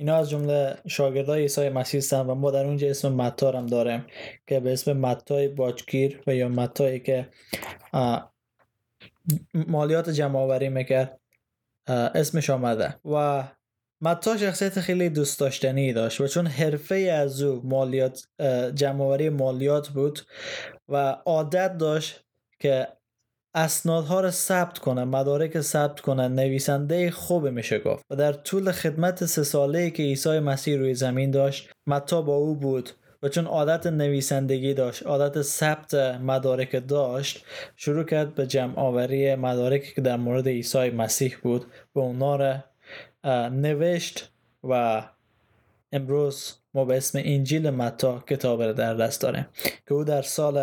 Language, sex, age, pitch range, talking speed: Persian, male, 20-39, 130-150 Hz, 135 wpm